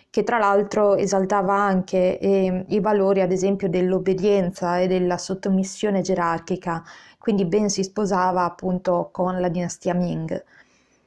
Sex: female